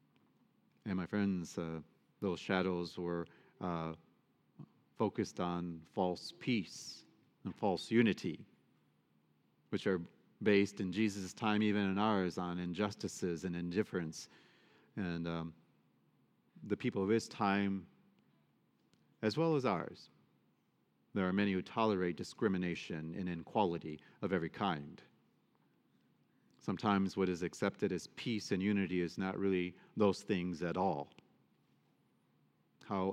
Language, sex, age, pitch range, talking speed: English, male, 40-59, 90-100 Hz, 120 wpm